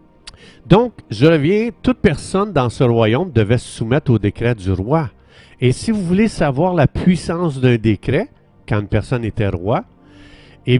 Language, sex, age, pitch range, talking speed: French, male, 50-69, 100-130 Hz, 165 wpm